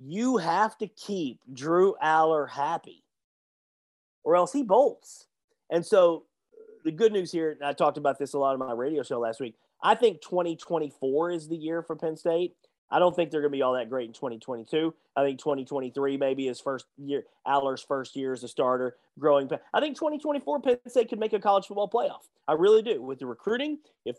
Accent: American